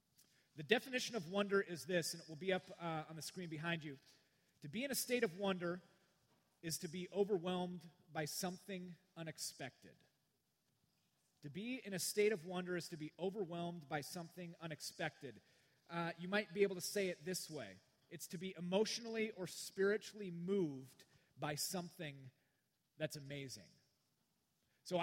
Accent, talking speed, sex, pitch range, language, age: American, 160 wpm, male, 150-190 Hz, English, 30-49